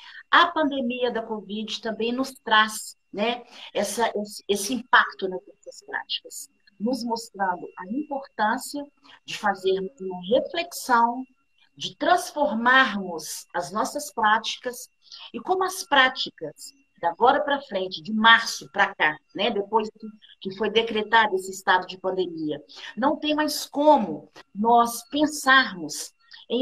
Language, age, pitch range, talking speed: Portuguese, 50-69, 210-285 Hz, 125 wpm